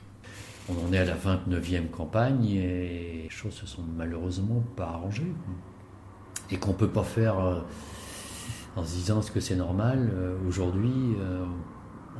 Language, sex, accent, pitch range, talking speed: French, male, French, 90-110 Hz, 150 wpm